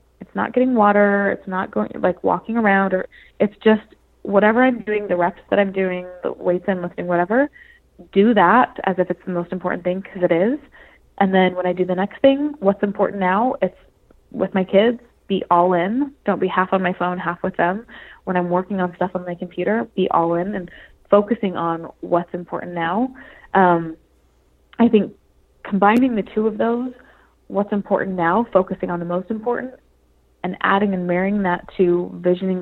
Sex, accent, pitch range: female, American, 175-210 Hz